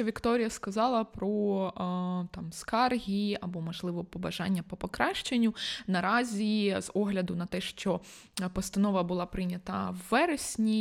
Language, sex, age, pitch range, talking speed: Ukrainian, female, 20-39, 180-215 Hz, 115 wpm